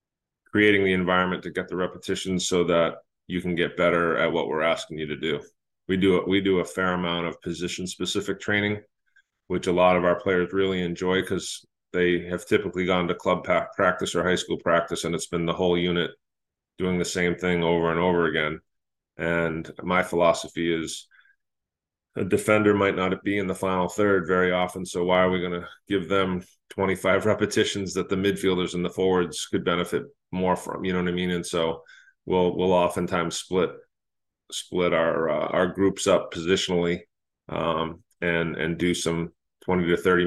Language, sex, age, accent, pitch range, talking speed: English, male, 30-49, American, 85-95 Hz, 190 wpm